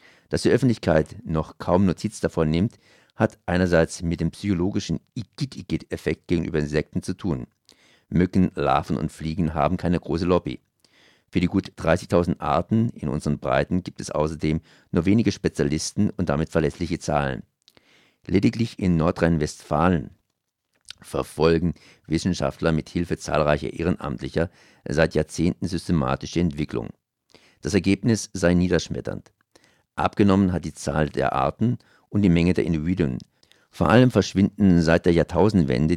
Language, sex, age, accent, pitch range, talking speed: German, male, 50-69, German, 75-95 Hz, 130 wpm